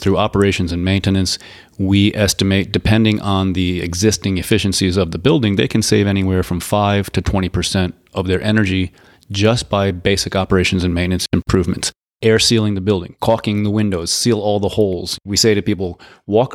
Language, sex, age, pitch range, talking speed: English, male, 30-49, 95-110 Hz, 175 wpm